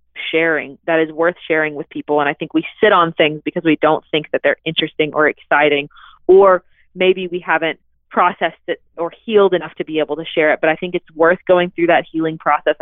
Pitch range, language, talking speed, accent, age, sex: 155-185 Hz, English, 225 wpm, American, 30-49, female